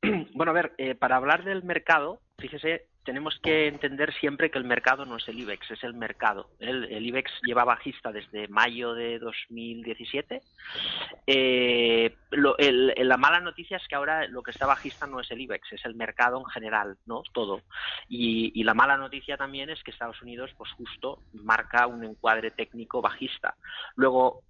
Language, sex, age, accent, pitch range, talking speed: Spanish, male, 30-49, Spanish, 115-140 Hz, 185 wpm